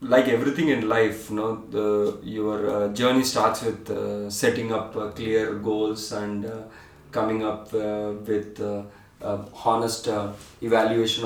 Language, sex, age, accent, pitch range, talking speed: English, male, 30-49, Indian, 105-120 Hz, 125 wpm